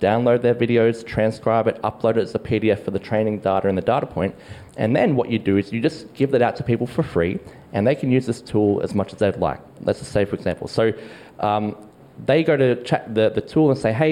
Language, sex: English, male